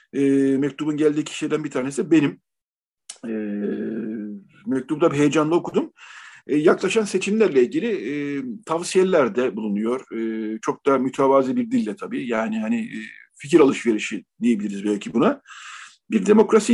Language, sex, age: Turkish, male, 50-69